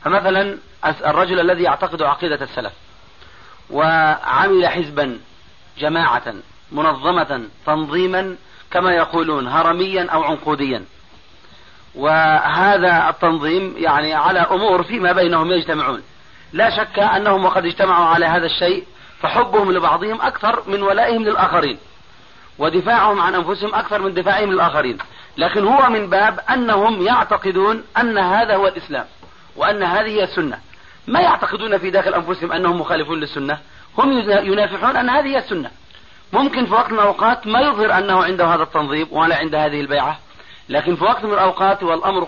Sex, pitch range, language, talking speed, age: male, 165-210 Hz, Arabic, 135 wpm, 40-59